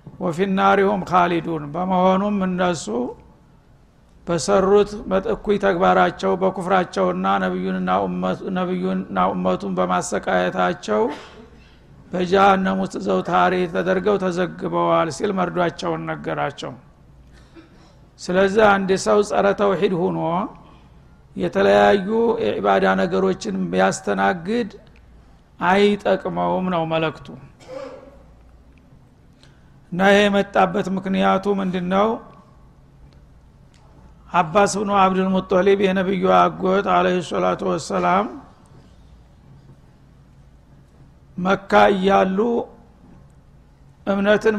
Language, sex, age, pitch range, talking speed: Amharic, male, 60-79, 160-195 Hz, 70 wpm